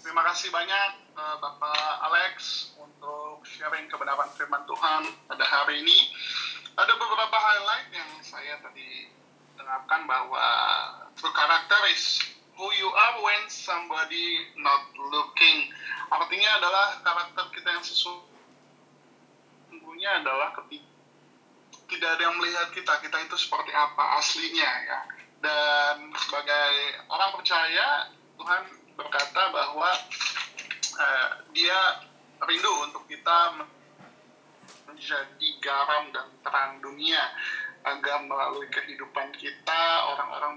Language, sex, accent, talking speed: Indonesian, male, native, 110 wpm